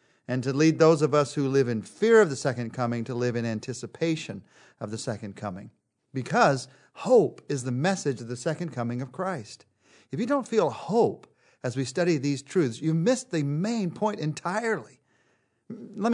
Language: English